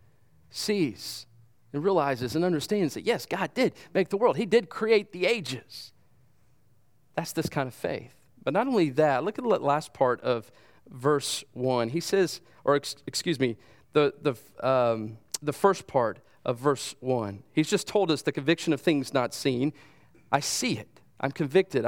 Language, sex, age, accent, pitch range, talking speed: English, male, 40-59, American, 130-180 Hz, 175 wpm